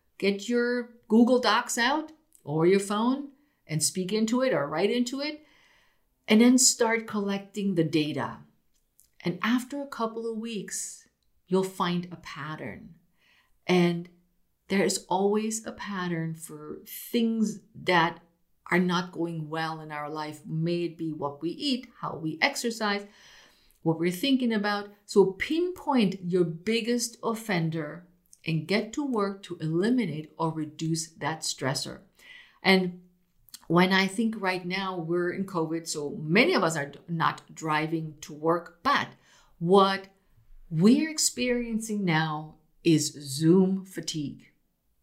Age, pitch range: 50-69, 165-230 Hz